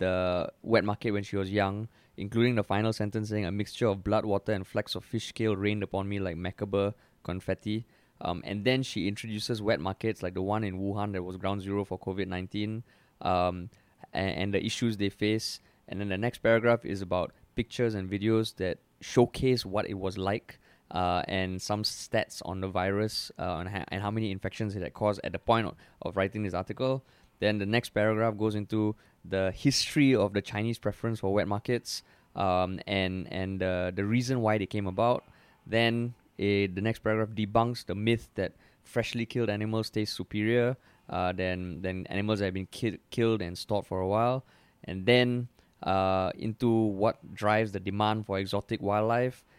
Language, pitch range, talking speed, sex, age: English, 95-115 Hz, 190 wpm, male, 20-39